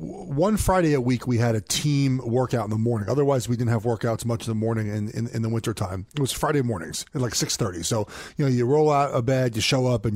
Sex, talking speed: male, 270 wpm